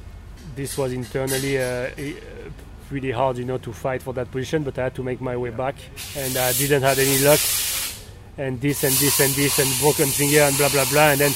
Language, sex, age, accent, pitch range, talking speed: English, male, 30-49, French, 130-145 Hz, 220 wpm